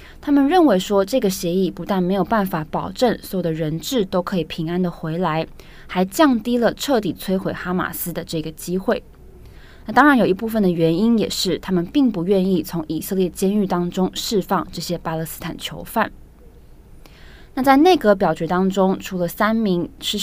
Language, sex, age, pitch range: Chinese, female, 20-39, 170-215 Hz